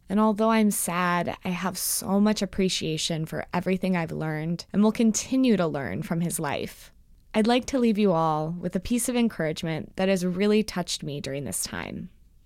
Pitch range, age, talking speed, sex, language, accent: 170-210 Hz, 20-39, 195 wpm, female, English, American